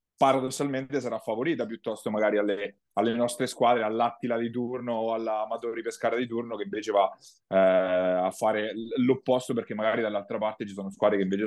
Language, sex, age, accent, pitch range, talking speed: Italian, male, 30-49, native, 115-135 Hz, 180 wpm